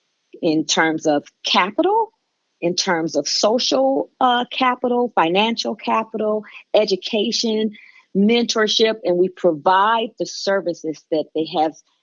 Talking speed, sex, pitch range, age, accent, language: 110 wpm, female, 170-220 Hz, 40-59, American, English